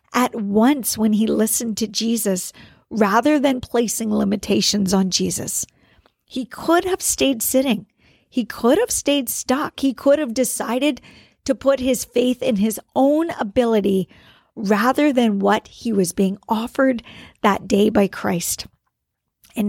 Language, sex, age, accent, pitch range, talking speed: English, female, 50-69, American, 200-255 Hz, 145 wpm